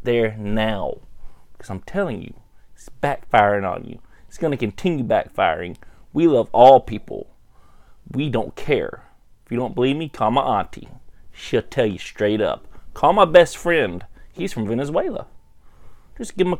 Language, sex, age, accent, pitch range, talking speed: English, male, 30-49, American, 125-180 Hz, 160 wpm